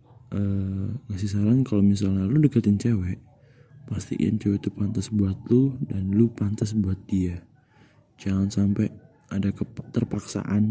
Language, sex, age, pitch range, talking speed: Indonesian, male, 20-39, 100-120 Hz, 135 wpm